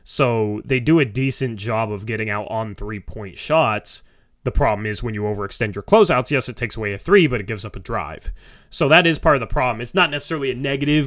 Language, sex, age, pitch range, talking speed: English, male, 20-39, 115-155 Hz, 240 wpm